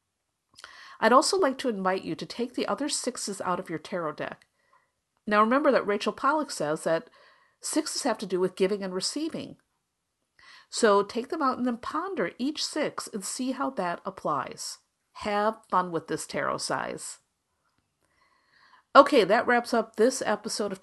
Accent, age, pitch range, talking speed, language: American, 50-69, 185-245 Hz, 165 wpm, English